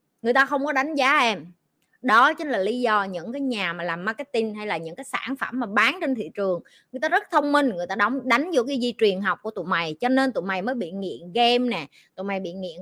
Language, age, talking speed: Vietnamese, 20-39, 275 wpm